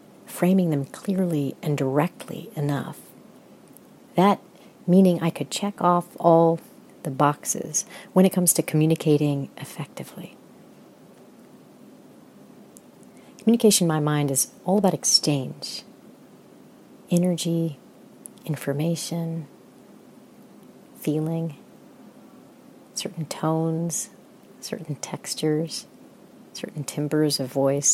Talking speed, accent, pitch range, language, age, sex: 85 wpm, American, 150-185 Hz, English, 40-59, female